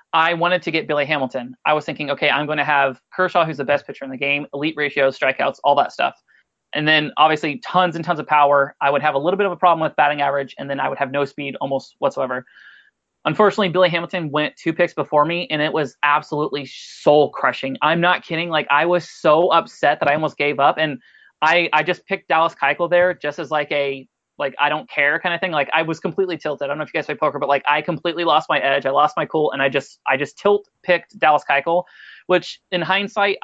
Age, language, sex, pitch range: 30-49, English, male, 145-175 Hz